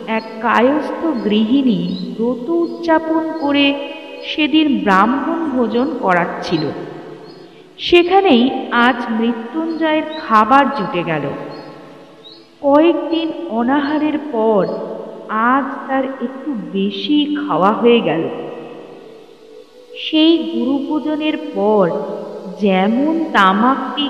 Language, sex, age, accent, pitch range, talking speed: Bengali, female, 50-69, native, 195-300 Hz, 75 wpm